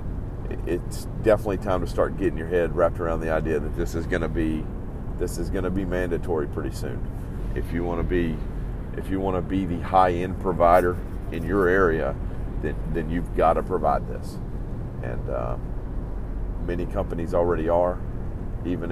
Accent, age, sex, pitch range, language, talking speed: American, 40-59, male, 85-100 Hz, English, 180 wpm